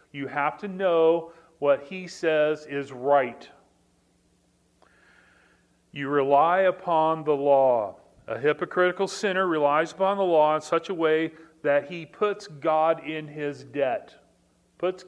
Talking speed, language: 130 wpm, English